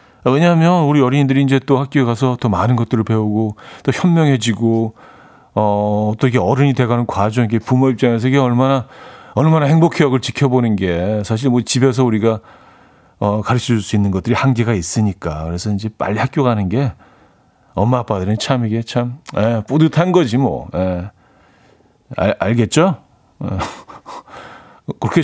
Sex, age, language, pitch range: male, 40-59, Korean, 110-145 Hz